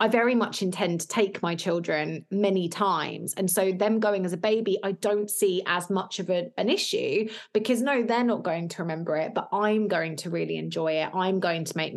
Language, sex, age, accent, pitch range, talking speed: English, female, 20-39, British, 170-215 Hz, 220 wpm